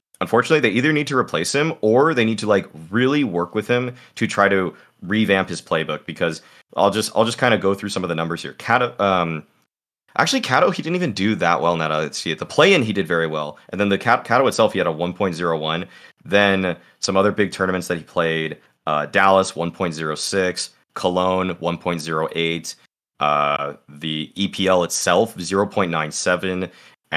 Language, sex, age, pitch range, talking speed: English, male, 30-49, 85-105 Hz, 185 wpm